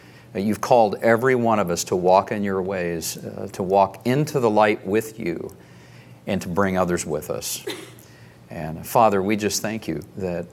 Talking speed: 180 wpm